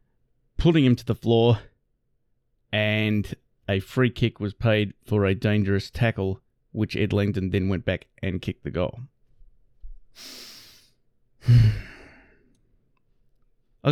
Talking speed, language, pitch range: 110 wpm, English, 105-125 Hz